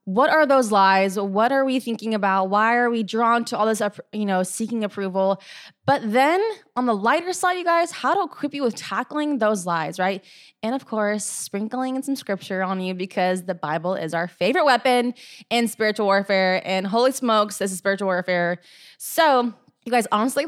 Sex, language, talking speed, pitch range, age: female, English, 195 wpm, 205-275 Hz, 20-39